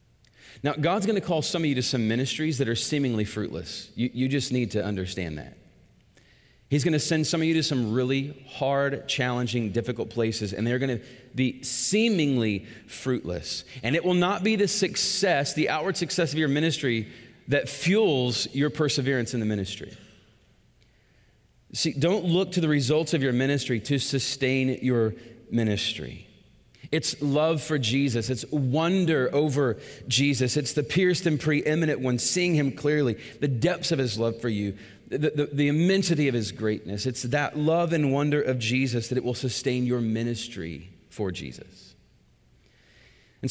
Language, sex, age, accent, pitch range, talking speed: English, male, 30-49, American, 115-150 Hz, 170 wpm